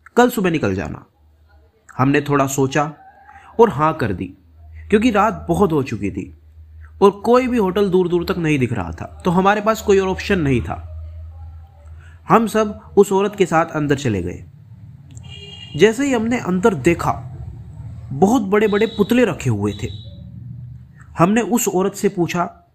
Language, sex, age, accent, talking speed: Hindi, male, 30-49, native, 160 wpm